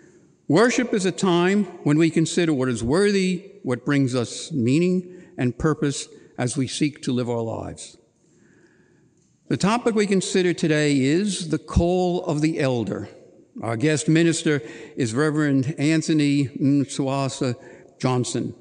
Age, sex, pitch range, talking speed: 60-79, male, 130-175 Hz, 135 wpm